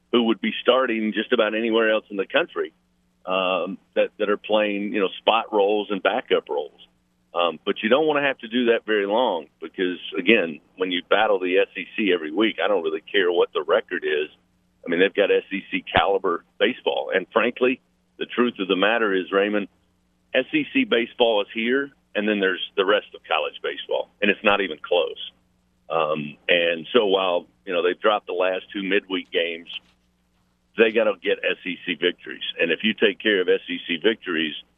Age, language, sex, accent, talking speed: 50-69, English, male, American, 195 wpm